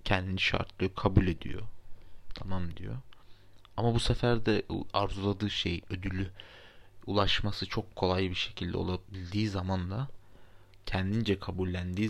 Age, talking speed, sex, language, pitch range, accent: 30-49, 115 wpm, male, Turkish, 90-100 Hz, native